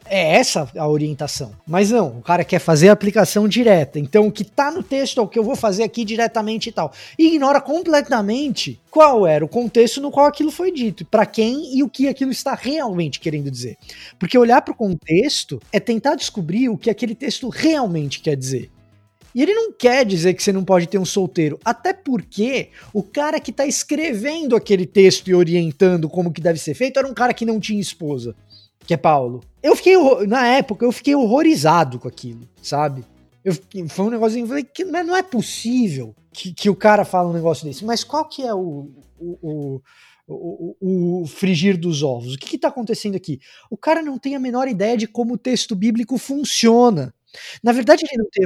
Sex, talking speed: male, 205 wpm